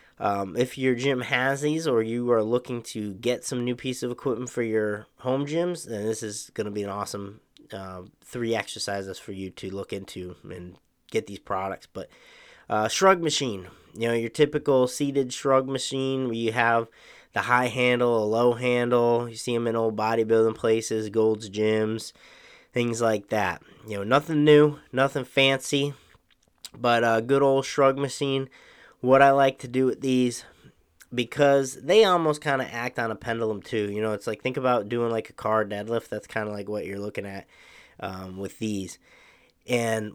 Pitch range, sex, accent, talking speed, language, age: 110-135 Hz, male, American, 185 wpm, English, 20-39